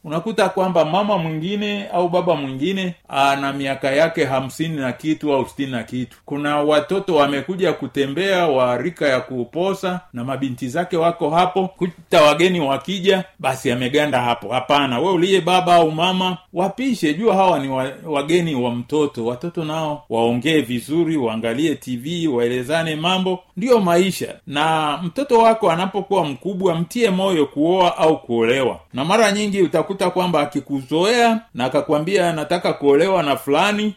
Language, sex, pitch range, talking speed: Swahili, male, 135-180 Hz, 145 wpm